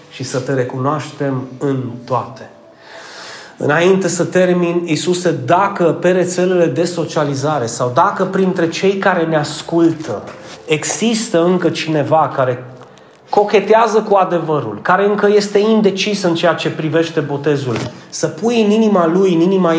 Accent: native